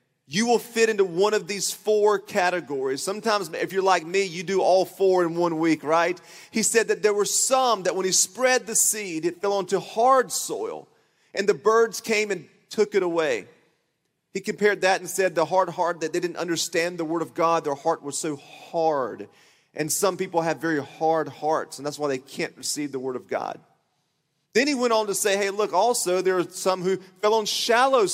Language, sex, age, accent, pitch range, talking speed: English, male, 40-59, American, 170-220 Hz, 215 wpm